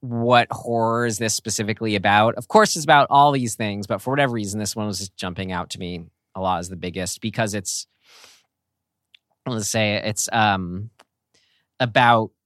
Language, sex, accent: English, male, American